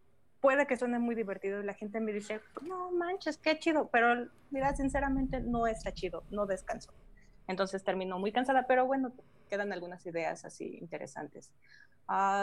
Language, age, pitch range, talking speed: Spanish, 20-39, 185-220 Hz, 165 wpm